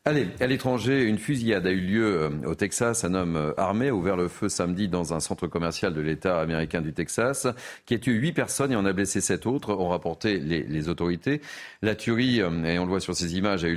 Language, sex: French, male